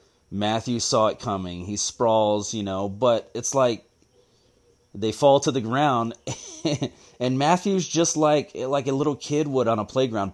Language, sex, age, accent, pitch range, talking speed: English, male, 30-49, American, 100-135 Hz, 170 wpm